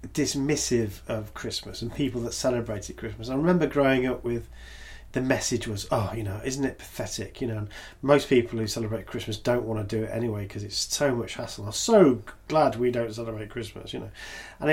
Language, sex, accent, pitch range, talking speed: English, male, British, 105-130 Hz, 205 wpm